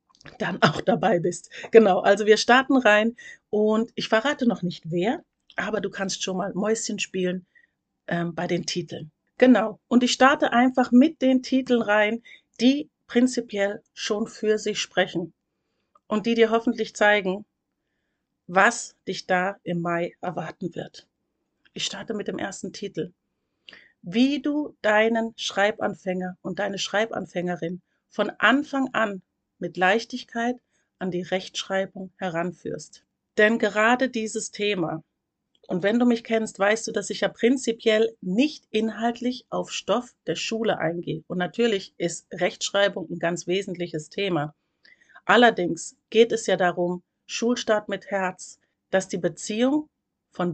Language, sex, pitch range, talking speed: German, female, 180-235 Hz, 140 wpm